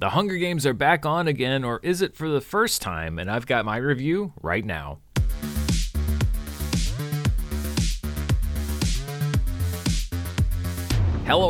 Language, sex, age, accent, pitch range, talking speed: English, male, 30-49, American, 110-145 Hz, 115 wpm